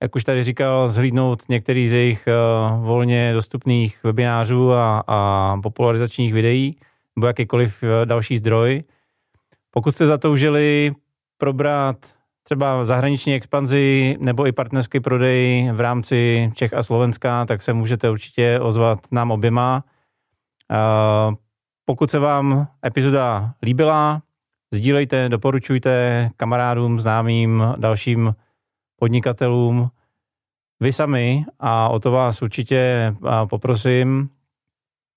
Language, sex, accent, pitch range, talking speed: Czech, male, native, 115-130 Hz, 105 wpm